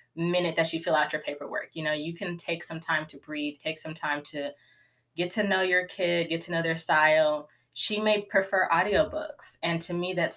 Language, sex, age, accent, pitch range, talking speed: English, female, 20-39, American, 145-170 Hz, 220 wpm